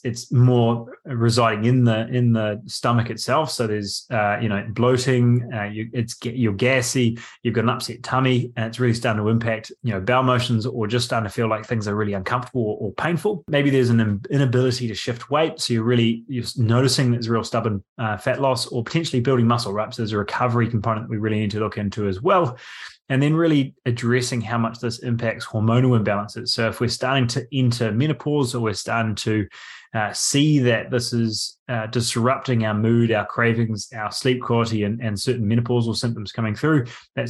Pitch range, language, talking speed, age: 110-125 Hz, English, 205 wpm, 20-39